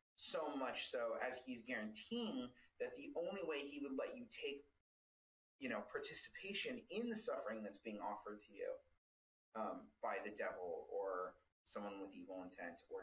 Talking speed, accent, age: 165 wpm, American, 30-49